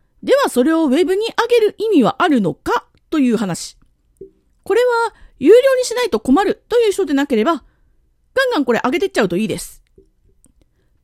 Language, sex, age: Japanese, female, 40-59